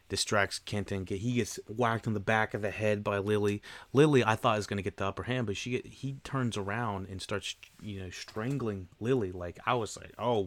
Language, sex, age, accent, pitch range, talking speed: English, male, 30-49, American, 95-110 Hz, 225 wpm